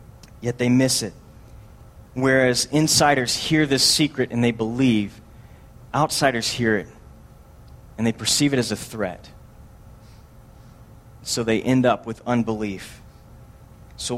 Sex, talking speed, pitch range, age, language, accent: male, 125 wpm, 120-185 Hz, 30-49, English, American